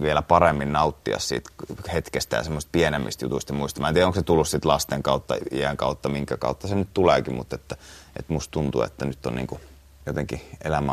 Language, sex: Finnish, male